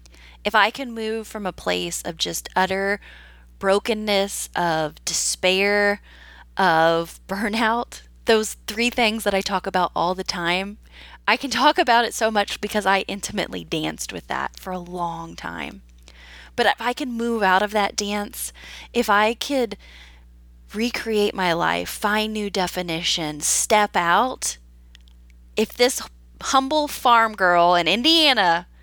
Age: 20-39